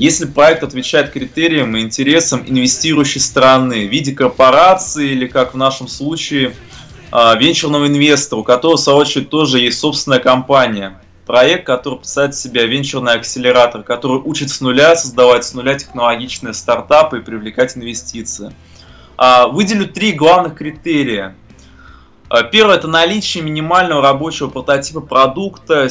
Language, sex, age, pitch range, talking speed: Russian, male, 20-39, 125-160 Hz, 130 wpm